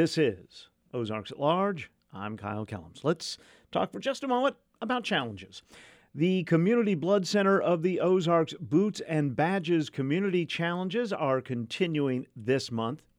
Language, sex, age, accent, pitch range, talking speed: English, male, 50-69, American, 110-155 Hz, 145 wpm